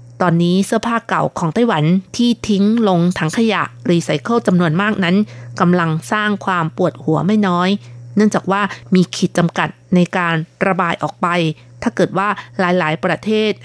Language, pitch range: Thai, 160-205 Hz